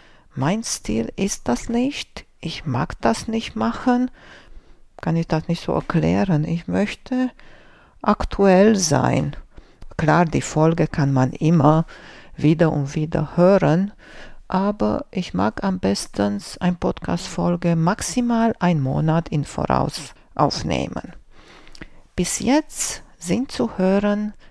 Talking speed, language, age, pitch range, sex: 120 wpm, German, 50-69, 155-200 Hz, female